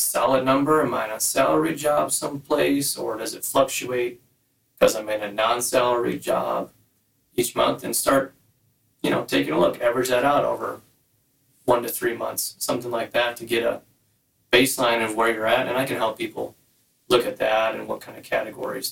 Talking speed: 190 wpm